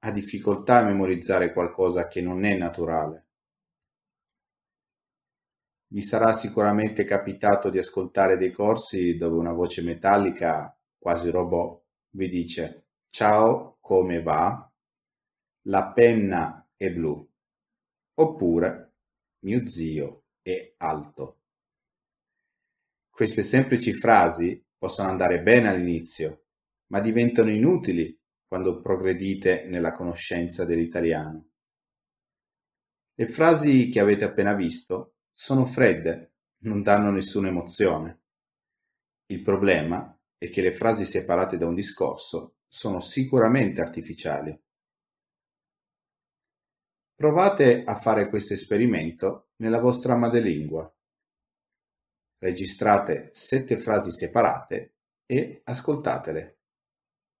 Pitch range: 85-115 Hz